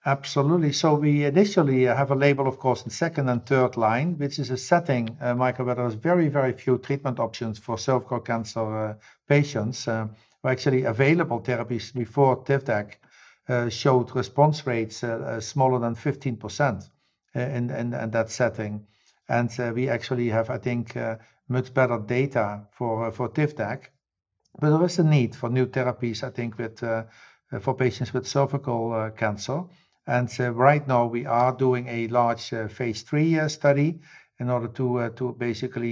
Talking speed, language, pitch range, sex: 175 wpm, English, 115-140 Hz, male